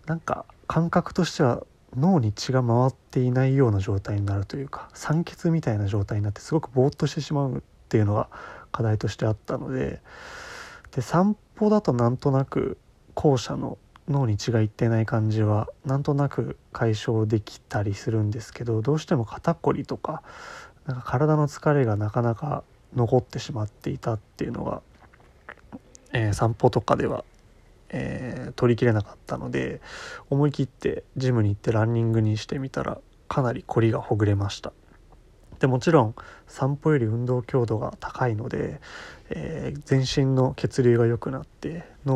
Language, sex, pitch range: Japanese, male, 110-140 Hz